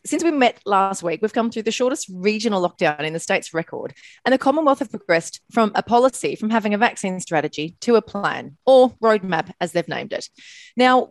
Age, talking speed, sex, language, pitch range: 30-49, 210 wpm, female, English, 175-240 Hz